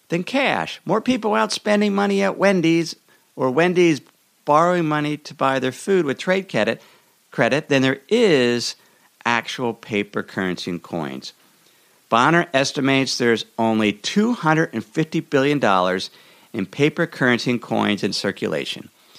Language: English